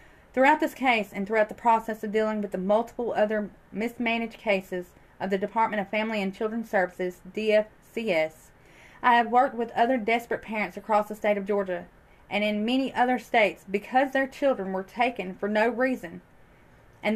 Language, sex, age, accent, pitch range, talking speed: English, female, 30-49, American, 200-240 Hz, 175 wpm